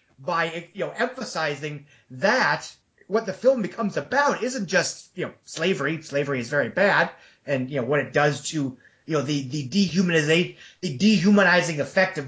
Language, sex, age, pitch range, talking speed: English, male, 30-49, 145-200 Hz, 170 wpm